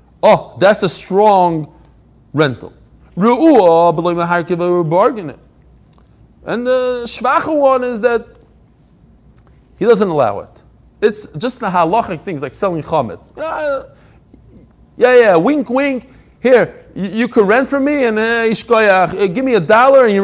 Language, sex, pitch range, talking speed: English, male, 155-235 Hz, 130 wpm